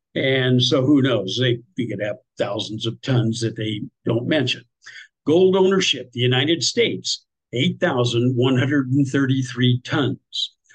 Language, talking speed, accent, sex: English, 155 wpm, American, male